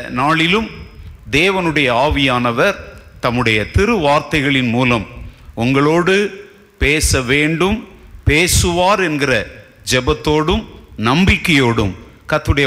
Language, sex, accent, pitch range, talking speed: Tamil, male, native, 110-170 Hz, 65 wpm